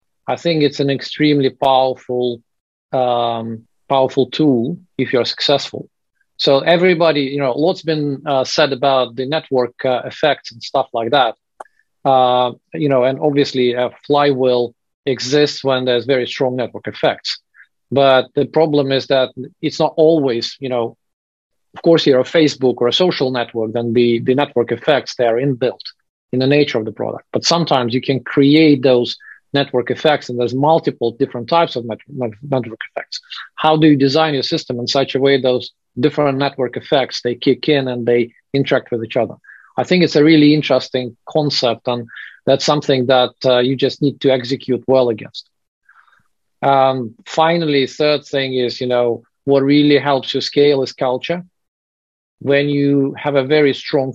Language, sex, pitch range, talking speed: English, male, 120-145 Hz, 170 wpm